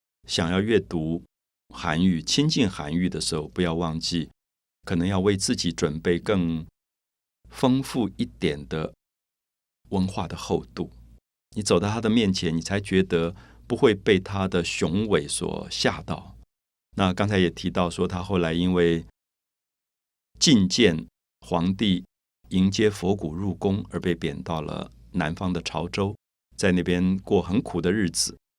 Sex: male